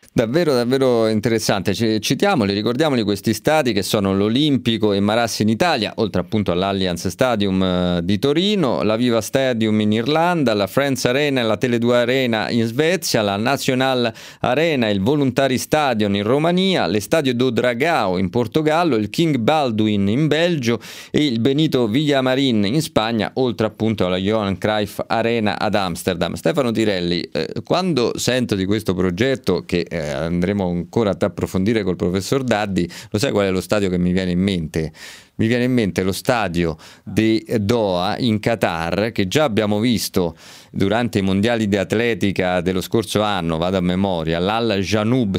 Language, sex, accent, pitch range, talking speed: Italian, male, native, 95-125 Hz, 165 wpm